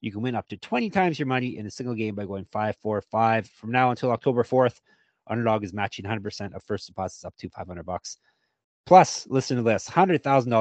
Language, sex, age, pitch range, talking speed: English, male, 30-49, 105-130 Hz, 210 wpm